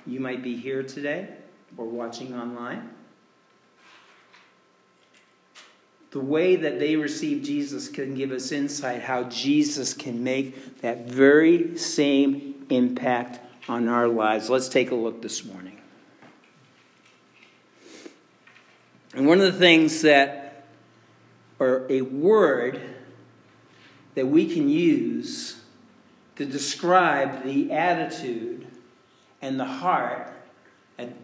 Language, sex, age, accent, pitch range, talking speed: English, male, 50-69, American, 125-170 Hz, 110 wpm